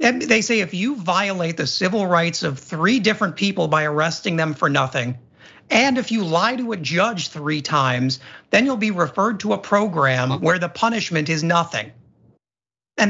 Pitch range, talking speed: 150-200 Hz, 180 wpm